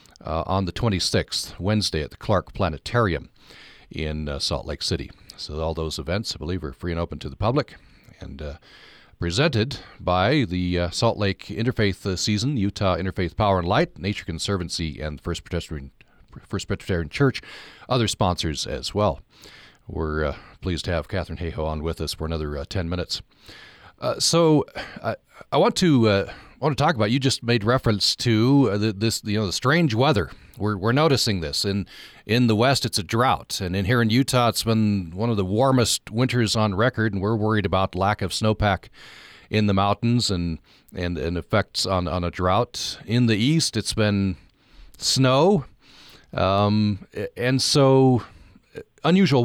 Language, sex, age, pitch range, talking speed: English, male, 40-59, 85-115 Hz, 180 wpm